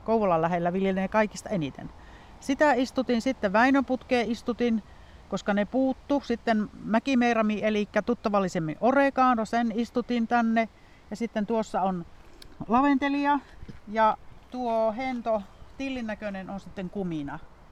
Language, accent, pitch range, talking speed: Finnish, native, 190-245 Hz, 115 wpm